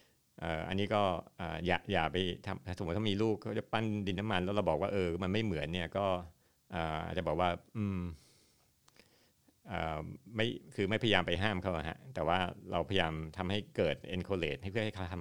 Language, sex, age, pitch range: Thai, male, 60-79, 85-105 Hz